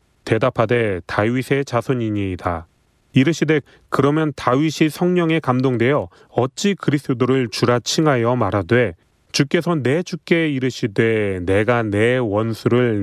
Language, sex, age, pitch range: Korean, male, 30-49, 110-150 Hz